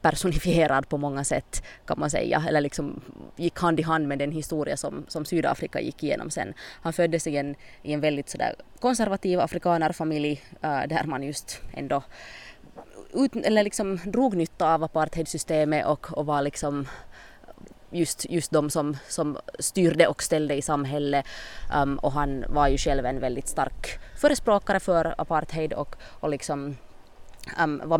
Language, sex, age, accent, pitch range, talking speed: English, female, 20-39, Finnish, 140-170 Hz, 160 wpm